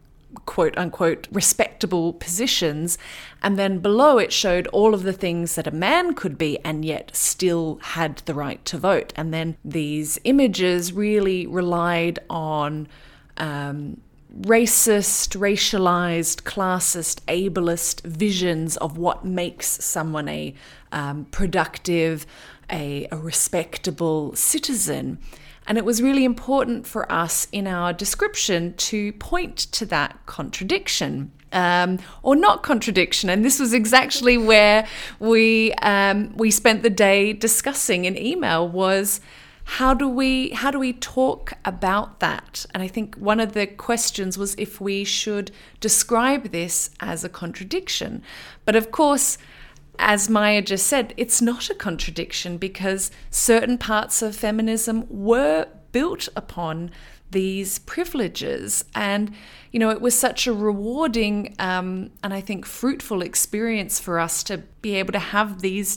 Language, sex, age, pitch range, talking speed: English, female, 30-49, 175-225 Hz, 135 wpm